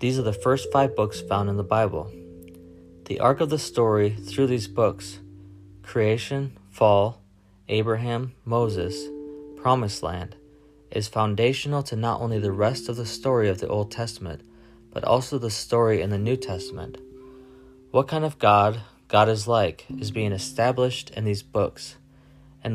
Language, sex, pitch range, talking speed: English, male, 100-125 Hz, 160 wpm